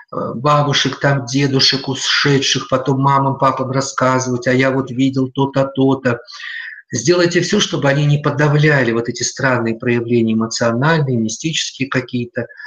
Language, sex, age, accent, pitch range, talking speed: Russian, male, 50-69, native, 120-150 Hz, 135 wpm